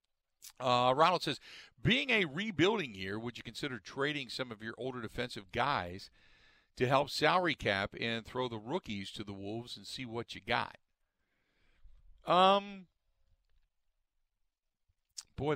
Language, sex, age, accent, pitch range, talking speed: English, male, 50-69, American, 100-135 Hz, 135 wpm